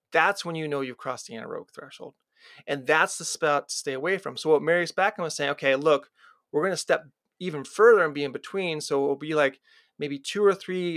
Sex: male